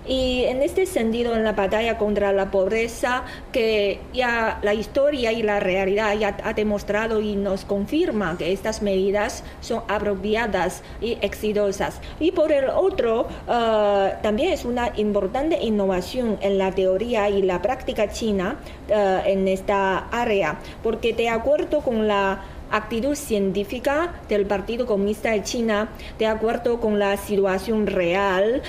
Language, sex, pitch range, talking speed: Spanish, female, 195-230 Hz, 140 wpm